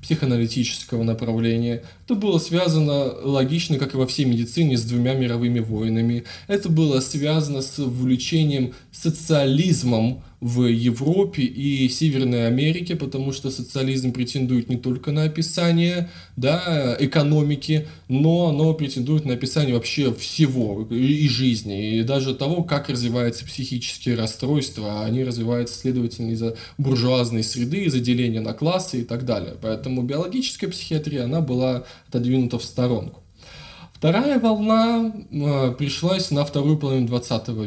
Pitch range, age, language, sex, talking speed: 120-155 Hz, 20-39, Russian, male, 125 wpm